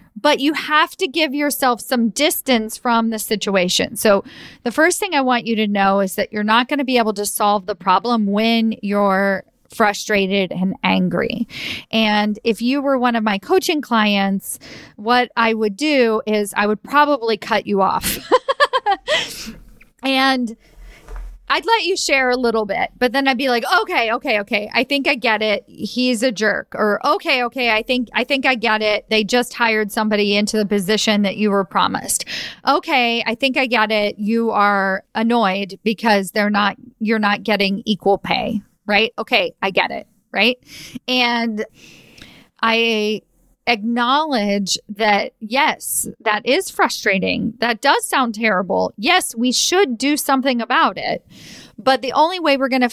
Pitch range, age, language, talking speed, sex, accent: 205-255 Hz, 40-59, English, 170 wpm, female, American